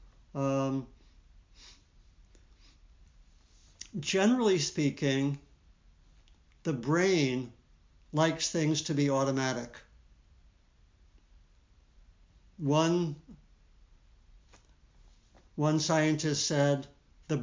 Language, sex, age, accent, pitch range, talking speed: English, male, 60-79, American, 105-155 Hz, 50 wpm